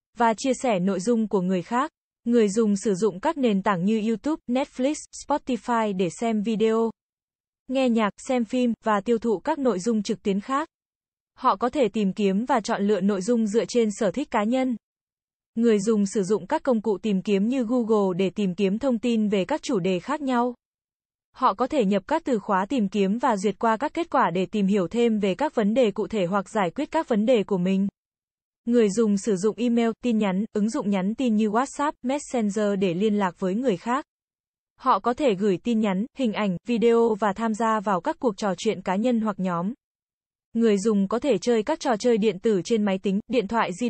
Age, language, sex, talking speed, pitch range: 20-39, Vietnamese, female, 225 wpm, 205-245 Hz